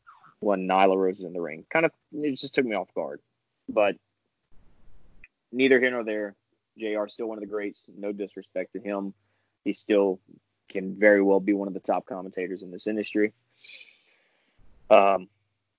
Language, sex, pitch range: English, male, 95-110 Hz